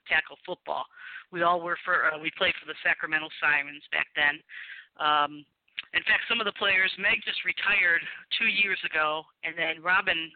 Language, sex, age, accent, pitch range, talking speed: English, female, 50-69, American, 155-185 Hz, 180 wpm